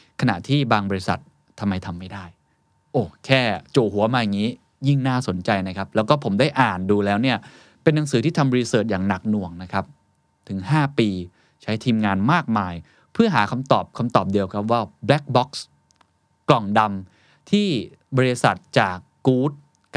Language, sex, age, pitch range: Thai, male, 20-39, 100-135 Hz